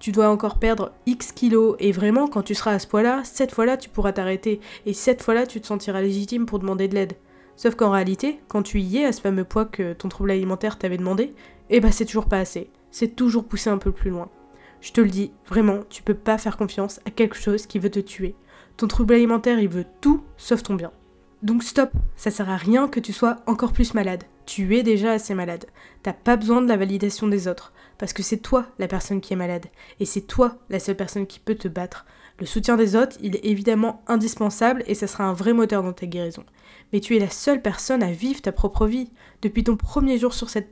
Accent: French